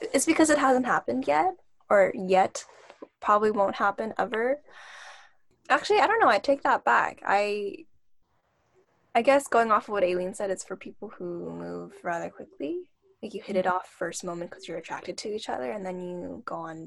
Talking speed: 190 wpm